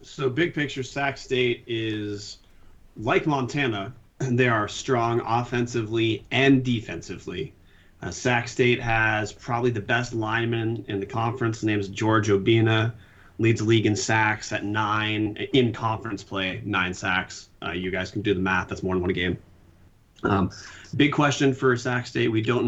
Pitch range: 100-120 Hz